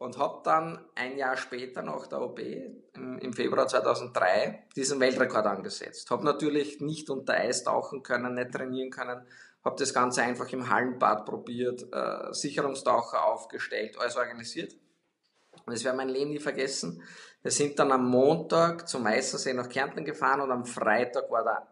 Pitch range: 125-145 Hz